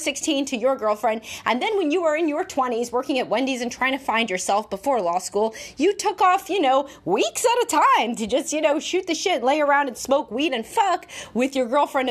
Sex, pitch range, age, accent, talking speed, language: female, 220-300 Hz, 30-49, American, 245 wpm, English